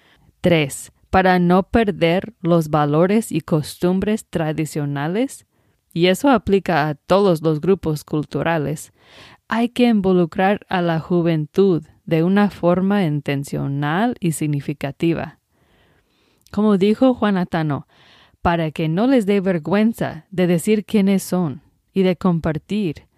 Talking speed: 120 wpm